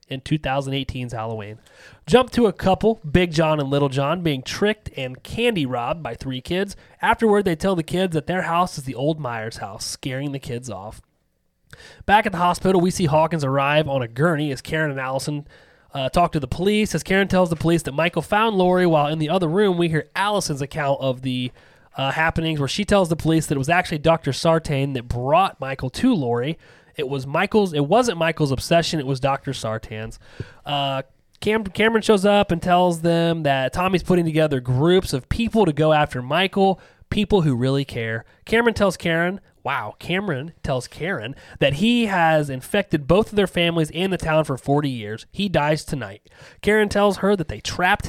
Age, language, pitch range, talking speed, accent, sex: 30-49, English, 135-180 Hz, 200 wpm, American, male